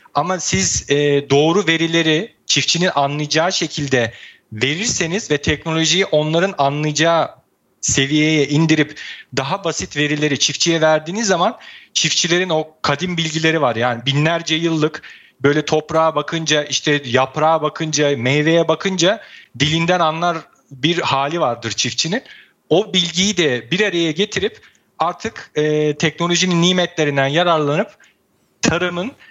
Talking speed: 115 wpm